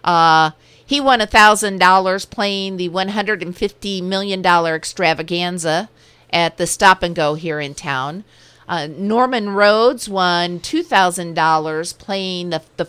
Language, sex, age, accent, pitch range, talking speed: English, female, 50-69, American, 180-230 Hz, 110 wpm